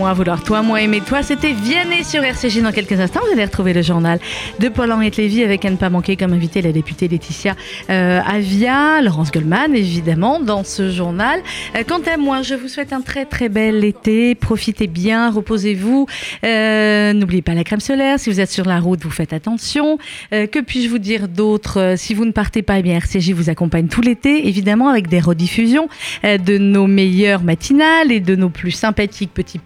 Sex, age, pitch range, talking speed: female, 30-49, 190-255 Hz, 205 wpm